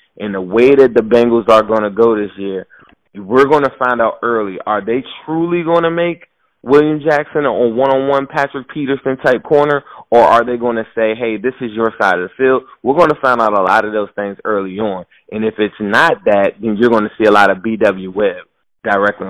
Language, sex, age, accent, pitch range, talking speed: English, male, 20-39, American, 105-130 Hz, 225 wpm